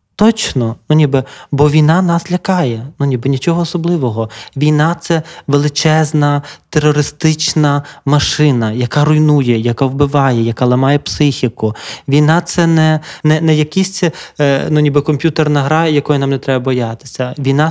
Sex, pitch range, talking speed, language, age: male, 135-160 Hz, 130 wpm, Ukrainian, 20-39